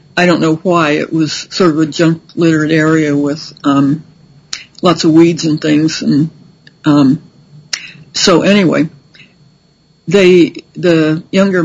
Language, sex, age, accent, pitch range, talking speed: English, female, 60-79, American, 155-175 Hz, 125 wpm